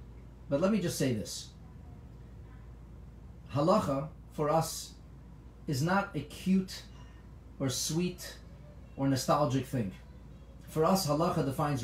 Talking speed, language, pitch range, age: 110 wpm, English, 120-170 Hz, 30-49